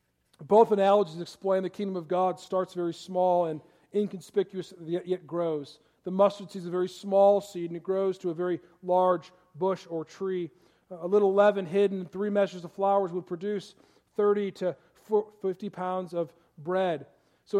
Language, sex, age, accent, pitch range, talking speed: English, male, 40-59, American, 170-210 Hz, 170 wpm